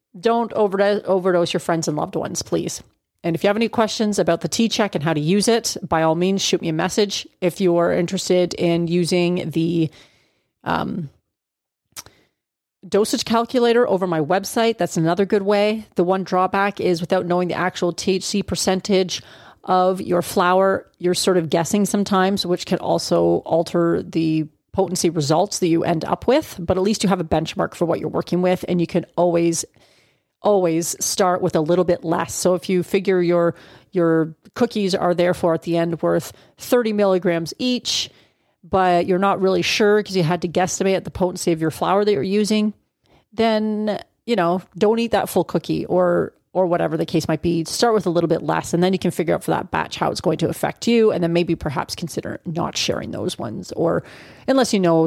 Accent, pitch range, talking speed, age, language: American, 170-200 Hz, 200 wpm, 30-49, English